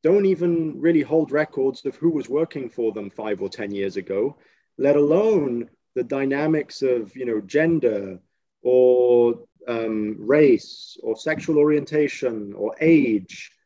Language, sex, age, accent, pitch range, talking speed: English, male, 30-49, British, 125-180 Hz, 140 wpm